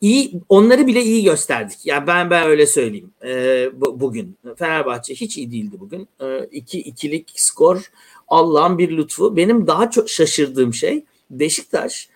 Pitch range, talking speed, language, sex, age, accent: 155-215 Hz, 160 wpm, Turkish, male, 60-79, native